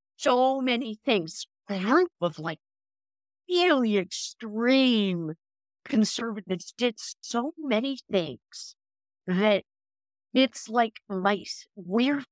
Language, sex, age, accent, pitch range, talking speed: English, female, 50-69, American, 185-250 Hz, 95 wpm